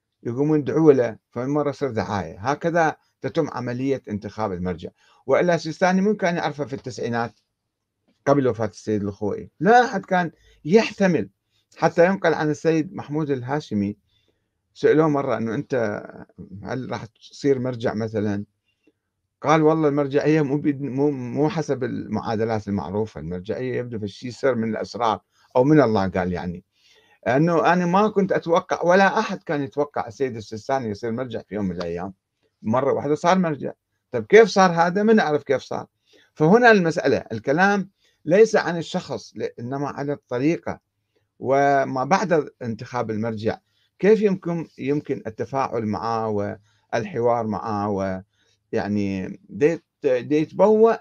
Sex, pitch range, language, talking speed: male, 105-160 Hz, Arabic, 135 wpm